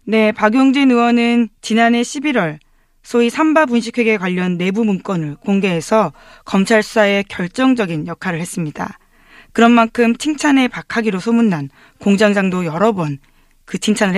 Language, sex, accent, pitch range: Korean, female, native, 180-235 Hz